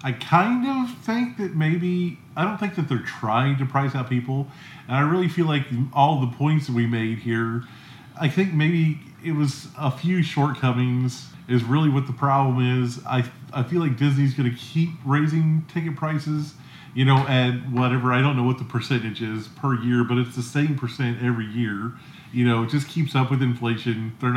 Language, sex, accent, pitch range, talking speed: English, male, American, 125-150 Hz, 200 wpm